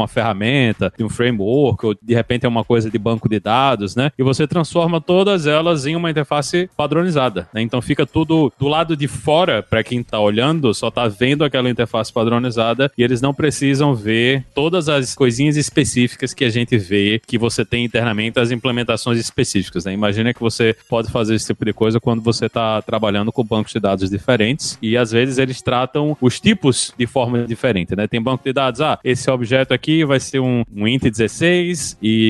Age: 20-39